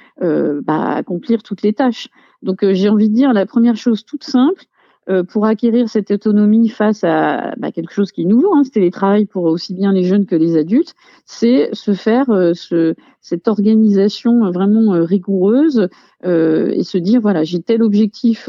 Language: French